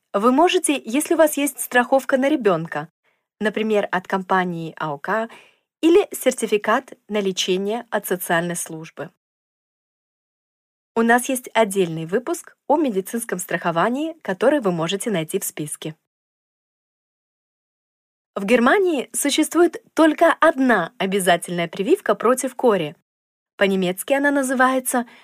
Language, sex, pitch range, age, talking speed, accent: Russian, female, 185-265 Hz, 20-39, 110 wpm, native